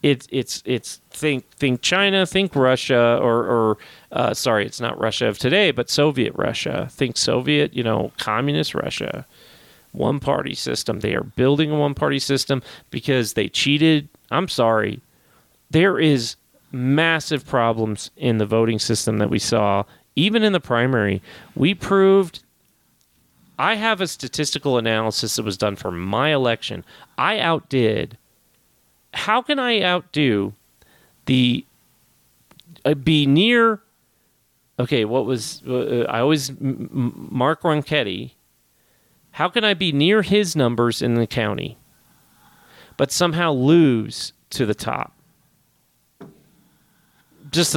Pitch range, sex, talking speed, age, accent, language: 115-165 Hz, male, 130 wpm, 30-49, American, English